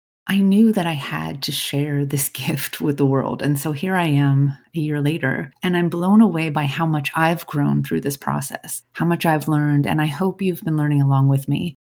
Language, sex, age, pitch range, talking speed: English, female, 30-49, 145-190 Hz, 230 wpm